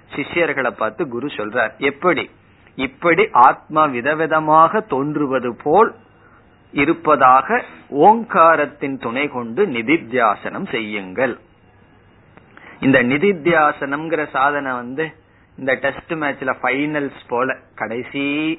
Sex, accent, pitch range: male, native, 125-165 Hz